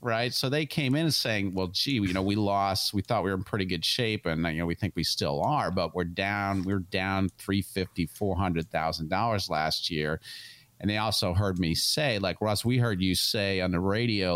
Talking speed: 235 wpm